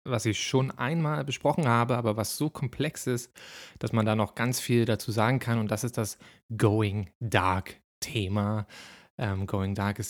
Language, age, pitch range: German, 20-39, 110-125 Hz